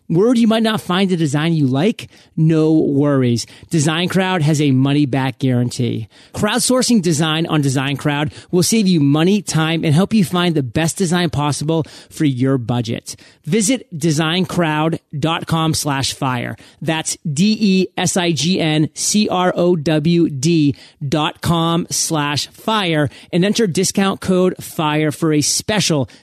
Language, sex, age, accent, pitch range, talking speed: English, male, 30-49, American, 145-190 Hz, 155 wpm